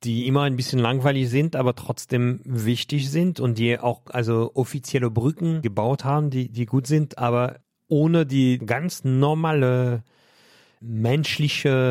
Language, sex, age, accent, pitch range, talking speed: German, male, 40-59, German, 110-130 Hz, 140 wpm